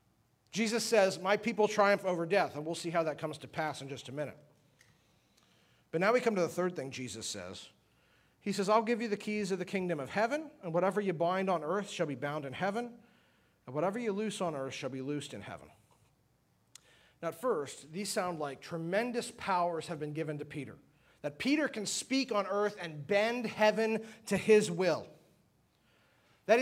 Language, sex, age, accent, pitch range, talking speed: English, male, 40-59, American, 160-215 Hz, 200 wpm